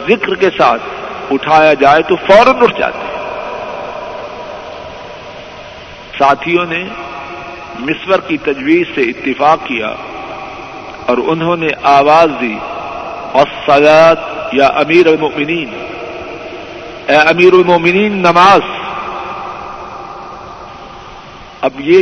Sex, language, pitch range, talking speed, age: male, Urdu, 140-210 Hz, 90 wpm, 50-69